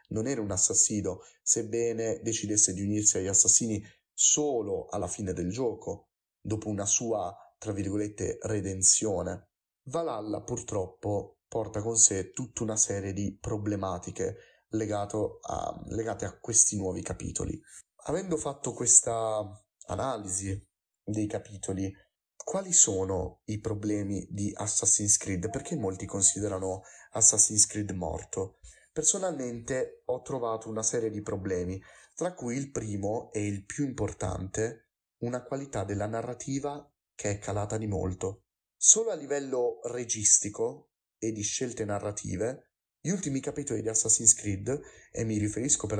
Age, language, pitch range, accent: 30-49, Italian, 100-120 Hz, native